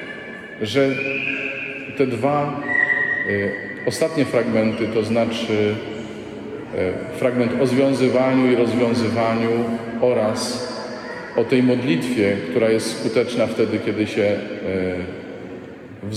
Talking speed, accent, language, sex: 85 wpm, native, Polish, male